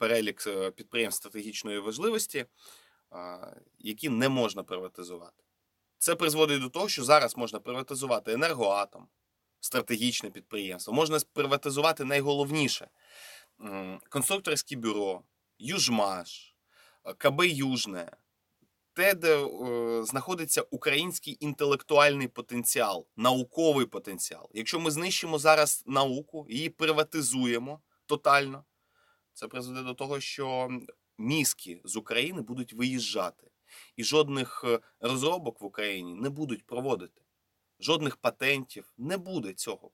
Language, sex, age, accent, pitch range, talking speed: Russian, male, 20-39, native, 115-145 Hz, 100 wpm